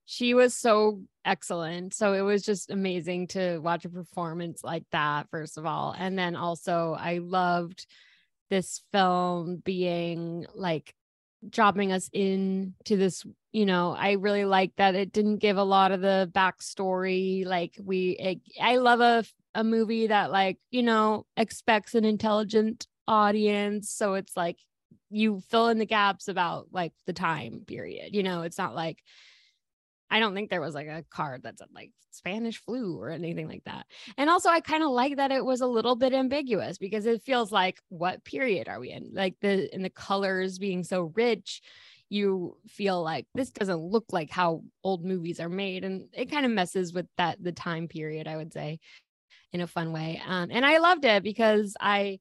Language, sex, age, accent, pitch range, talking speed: English, female, 20-39, American, 175-215 Hz, 185 wpm